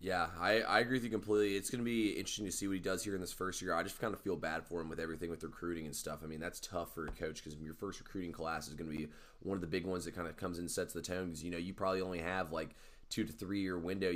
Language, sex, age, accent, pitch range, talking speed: English, male, 20-39, American, 80-100 Hz, 330 wpm